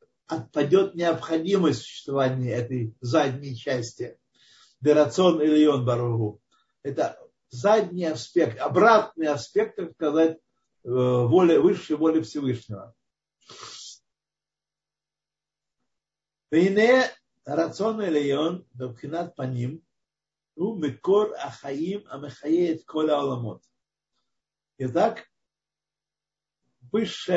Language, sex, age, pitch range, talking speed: Russian, male, 50-69, 130-185 Hz, 45 wpm